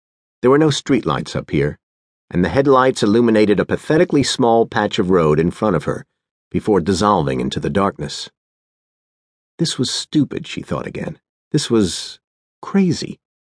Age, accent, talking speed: 50-69, American, 150 wpm